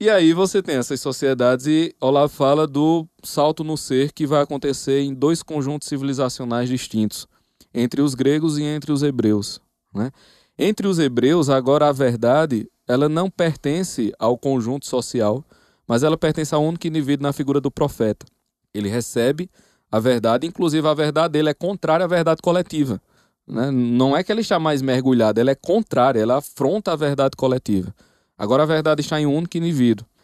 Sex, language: male, Portuguese